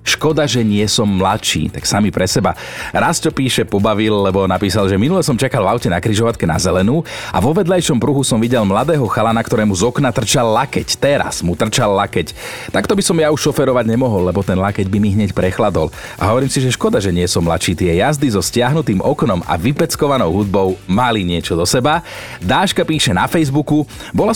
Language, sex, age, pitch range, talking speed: Slovak, male, 40-59, 100-145 Hz, 205 wpm